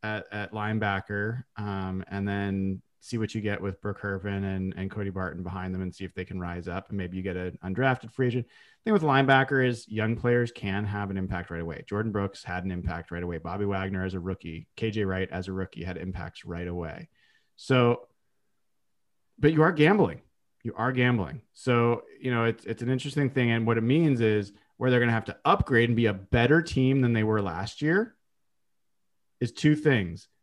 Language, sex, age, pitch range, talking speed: English, male, 30-49, 100-125 Hz, 215 wpm